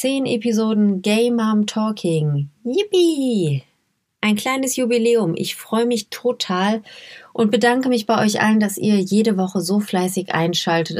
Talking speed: 130 wpm